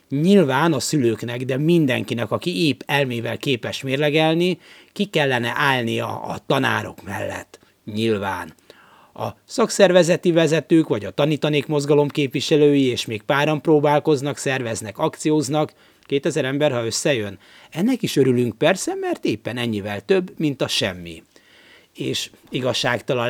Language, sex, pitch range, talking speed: Hungarian, male, 115-155 Hz, 125 wpm